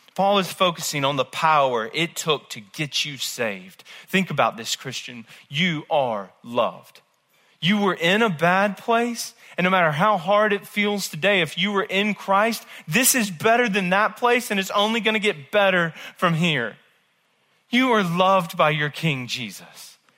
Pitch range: 140-195 Hz